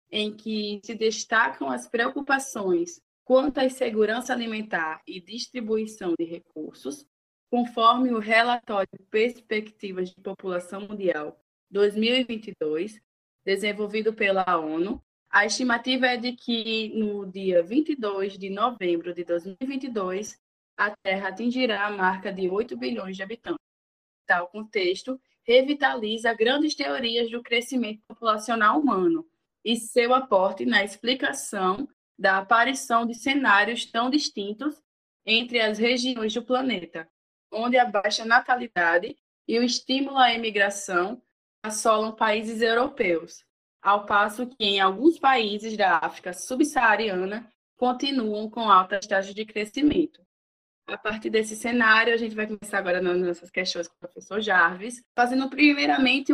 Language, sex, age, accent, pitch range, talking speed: Portuguese, female, 20-39, Brazilian, 195-245 Hz, 125 wpm